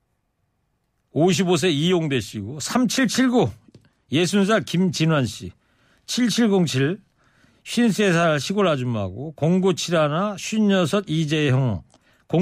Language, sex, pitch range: Korean, male, 145-195 Hz